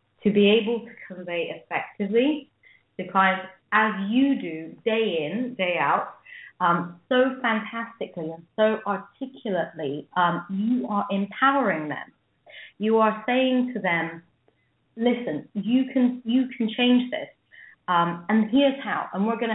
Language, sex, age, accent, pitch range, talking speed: English, female, 30-49, British, 175-230 Hz, 140 wpm